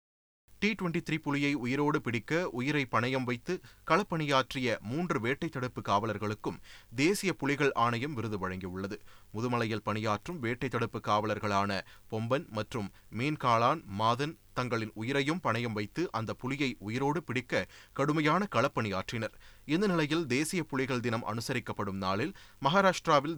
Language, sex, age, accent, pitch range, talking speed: Tamil, male, 30-49, native, 105-145 Hz, 115 wpm